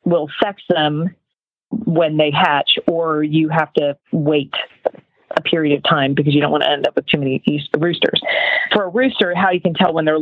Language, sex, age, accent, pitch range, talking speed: English, female, 40-59, American, 155-185 Hz, 210 wpm